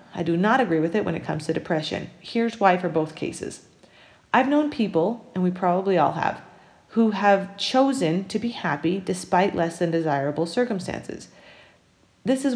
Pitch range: 175-245 Hz